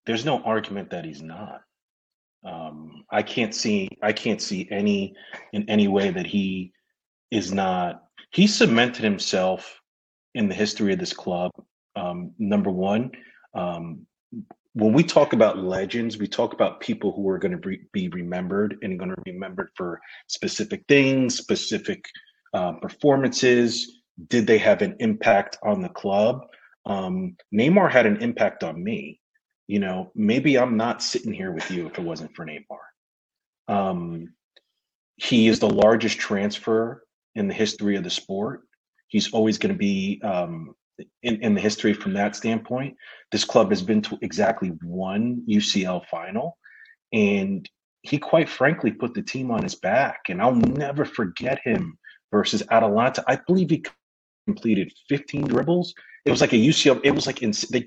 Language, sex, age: English, male, 30-49